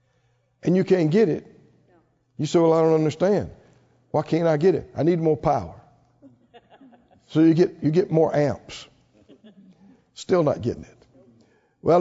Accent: American